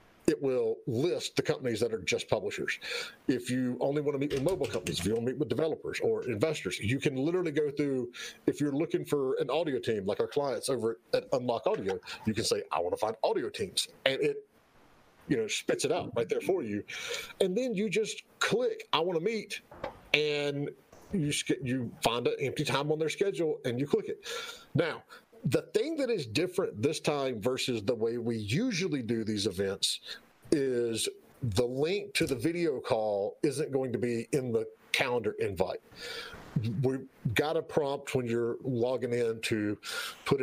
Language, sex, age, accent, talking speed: English, male, 40-59, American, 195 wpm